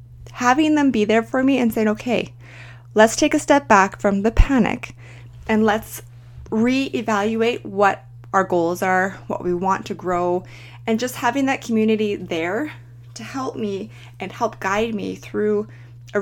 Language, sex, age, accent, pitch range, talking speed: English, female, 20-39, American, 155-210 Hz, 165 wpm